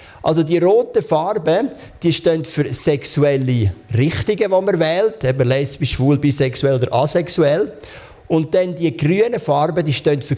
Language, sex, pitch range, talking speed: German, male, 130-160 Hz, 150 wpm